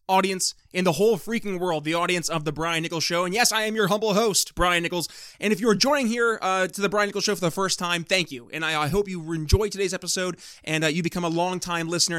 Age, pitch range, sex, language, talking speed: 20-39, 160-200 Hz, male, English, 270 wpm